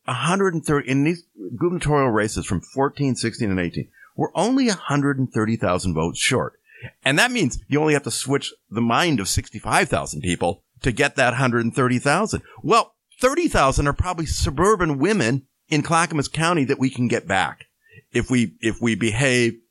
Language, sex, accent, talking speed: English, male, American, 190 wpm